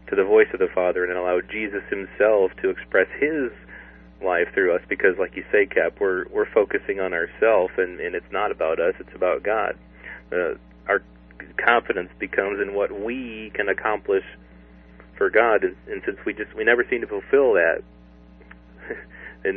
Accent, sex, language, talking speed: American, male, English, 180 wpm